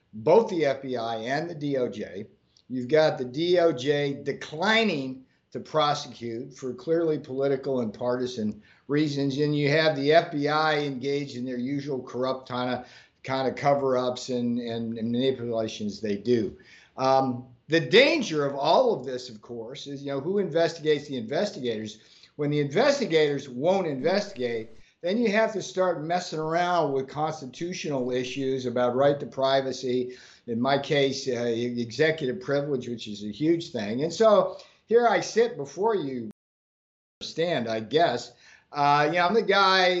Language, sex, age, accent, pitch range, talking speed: English, male, 50-69, American, 125-165 Hz, 155 wpm